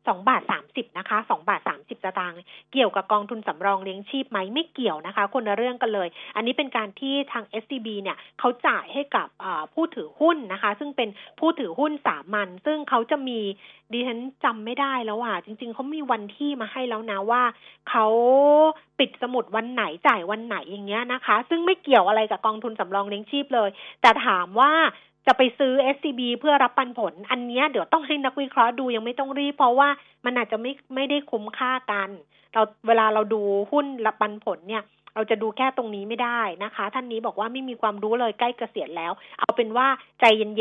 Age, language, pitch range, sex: 30-49, Thai, 205-270 Hz, female